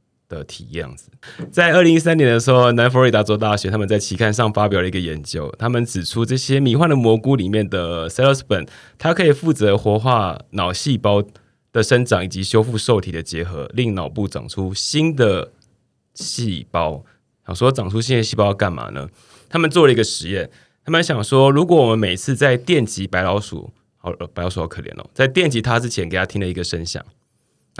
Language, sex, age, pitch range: Chinese, male, 20-39, 95-130 Hz